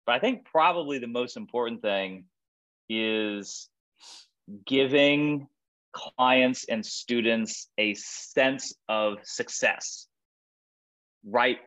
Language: English